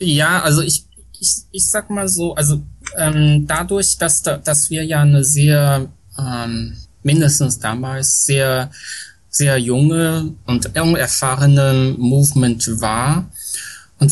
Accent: German